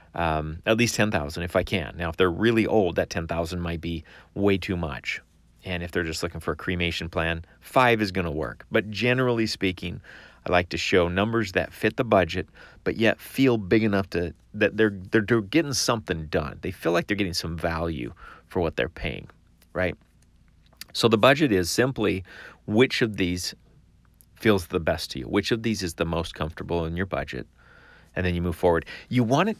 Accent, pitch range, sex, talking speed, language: American, 85-110 Hz, male, 205 wpm, English